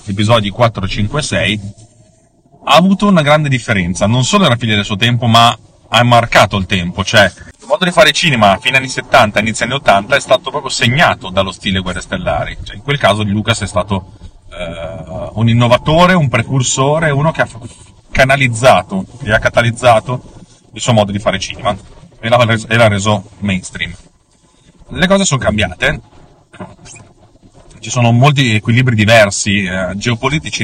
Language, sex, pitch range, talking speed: Italian, male, 100-125 Hz, 170 wpm